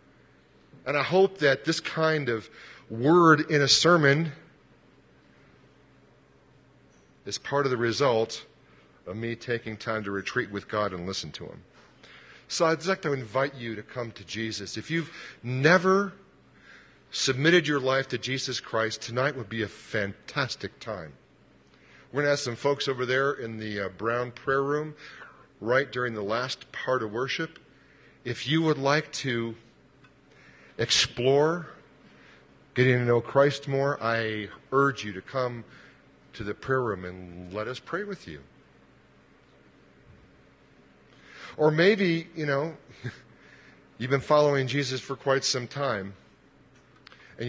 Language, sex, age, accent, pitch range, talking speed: English, male, 40-59, American, 105-140 Hz, 145 wpm